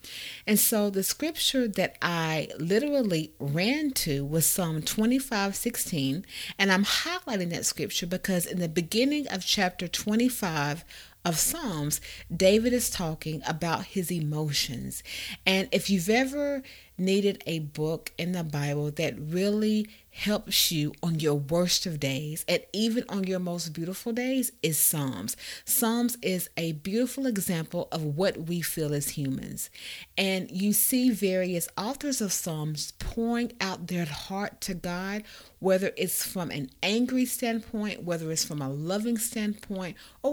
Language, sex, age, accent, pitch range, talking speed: English, female, 30-49, American, 165-230 Hz, 145 wpm